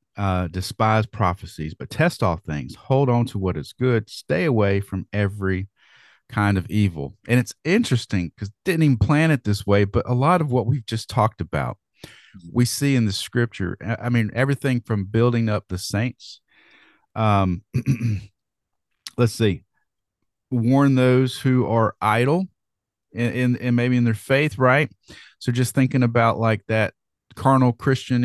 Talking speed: 155 wpm